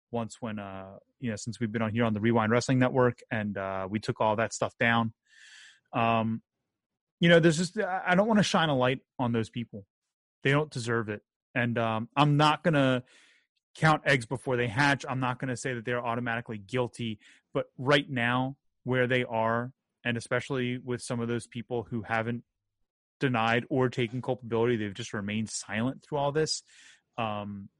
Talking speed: 190 wpm